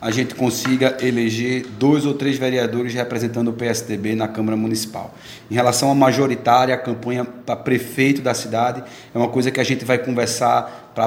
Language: Portuguese